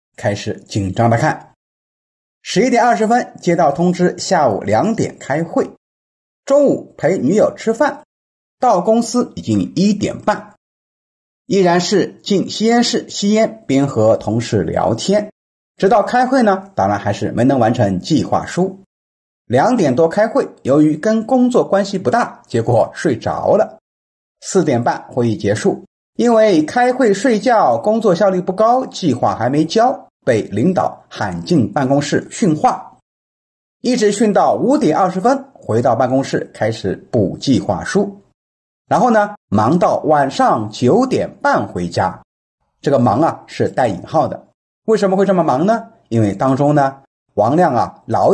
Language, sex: Chinese, male